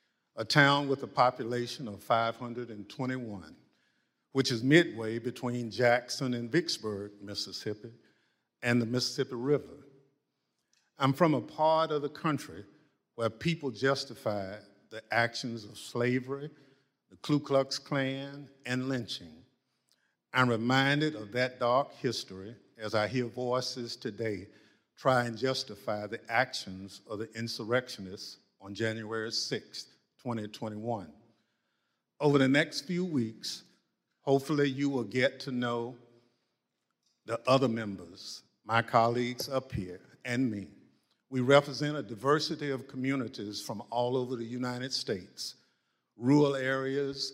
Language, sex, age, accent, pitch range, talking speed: English, male, 50-69, American, 115-135 Hz, 125 wpm